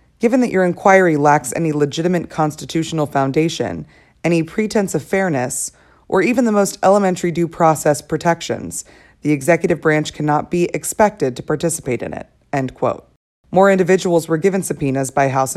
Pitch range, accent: 140-185 Hz, American